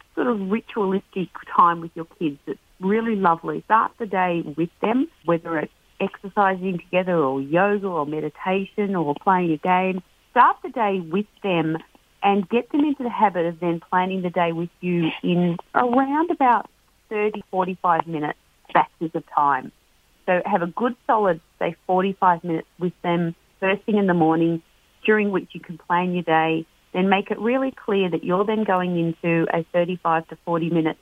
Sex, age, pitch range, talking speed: female, 40-59, 165-200 Hz, 175 wpm